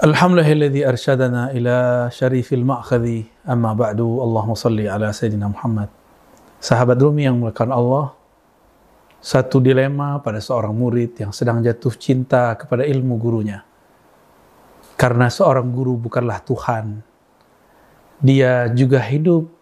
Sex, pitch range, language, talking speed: male, 120-145 Hz, Indonesian, 110 wpm